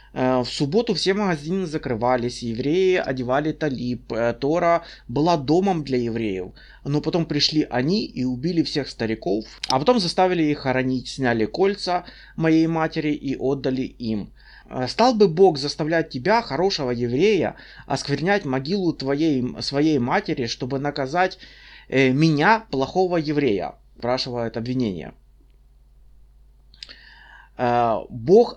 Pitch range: 130-185 Hz